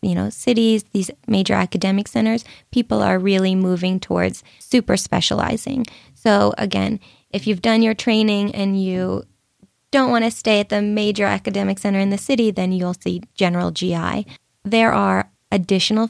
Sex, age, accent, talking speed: female, 20-39, American, 160 wpm